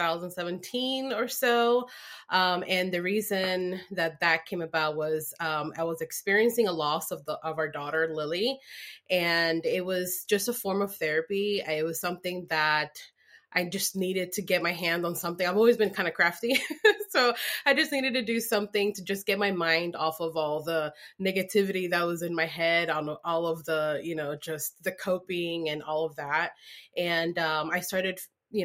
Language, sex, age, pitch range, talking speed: English, female, 20-39, 165-205 Hz, 190 wpm